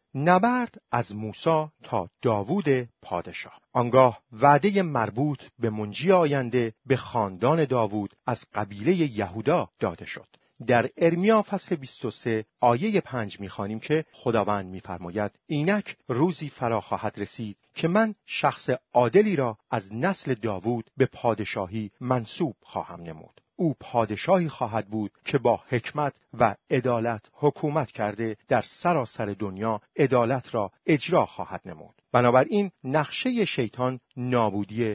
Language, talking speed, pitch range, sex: Persian, 120 wpm, 110-155 Hz, male